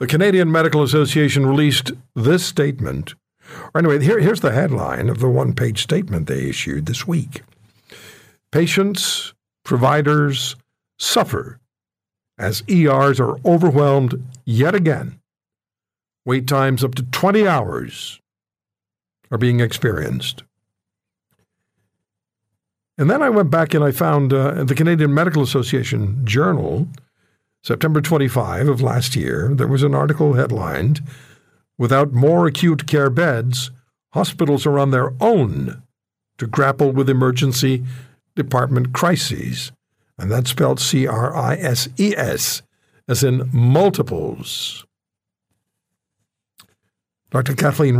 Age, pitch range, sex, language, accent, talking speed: 60-79, 120-150 Hz, male, English, American, 110 wpm